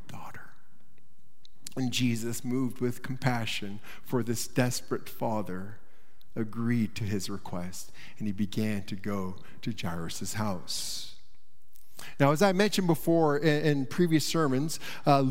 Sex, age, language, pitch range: male, 50-69, English, 135-200 Hz